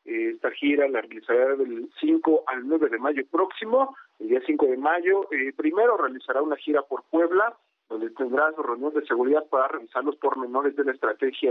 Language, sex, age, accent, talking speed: Spanish, male, 50-69, Mexican, 190 wpm